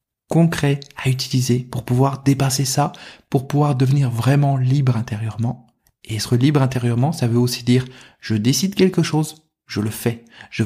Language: French